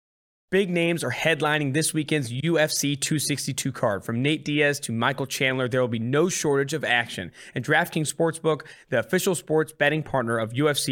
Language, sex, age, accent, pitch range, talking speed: English, male, 20-39, American, 125-155 Hz, 175 wpm